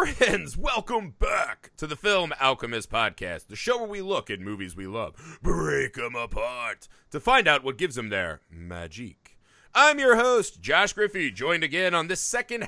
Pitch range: 140-195 Hz